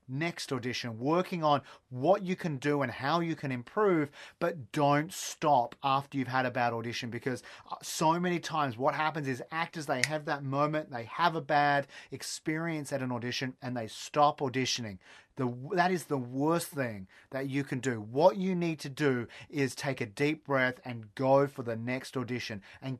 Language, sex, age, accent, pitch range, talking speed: English, male, 30-49, Australian, 130-170 Hz, 190 wpm